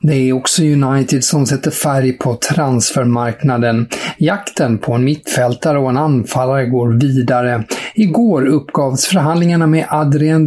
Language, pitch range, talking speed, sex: English, 125-160 Hz, 125 wpm, male